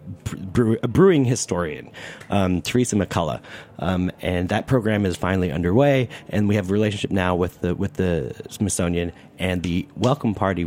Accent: American